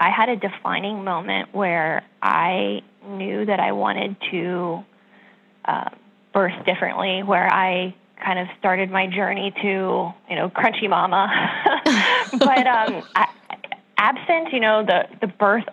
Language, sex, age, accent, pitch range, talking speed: English, female, 10-29, American, 185-220 Hz, 135 wpm